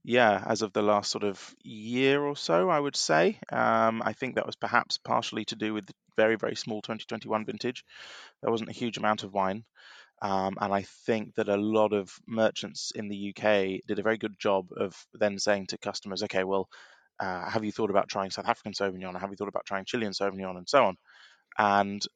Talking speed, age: 220 wpm, 20-39